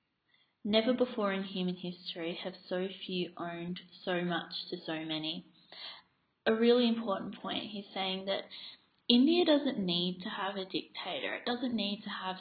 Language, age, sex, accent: English, 20-39, female, Australian